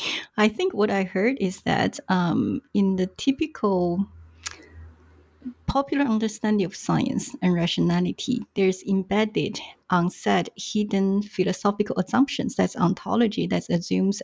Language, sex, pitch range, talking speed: English, female, 180-210 Hz, 115 wpm